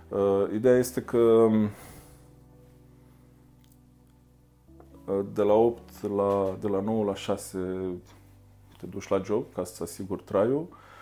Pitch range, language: 95-115 Hz, Romanian